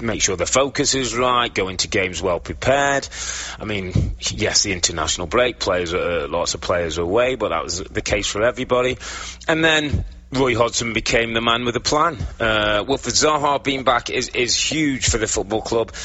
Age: 30-49